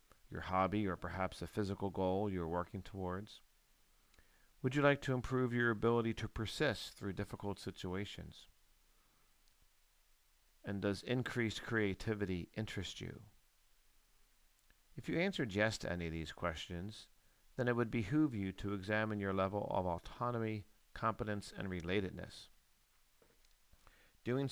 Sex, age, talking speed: male, 50-69, 125 wpm